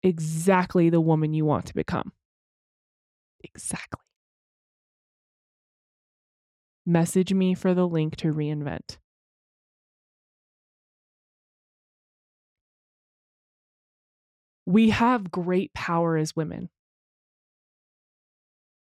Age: 20-39